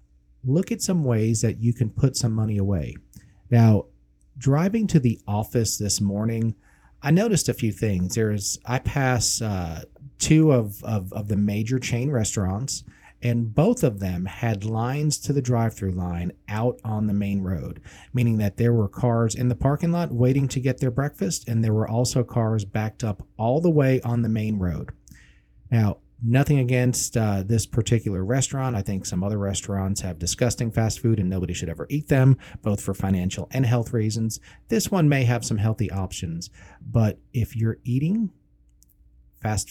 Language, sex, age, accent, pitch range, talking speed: English, male, 40-59, American, 100-125 Hz, 180 wpm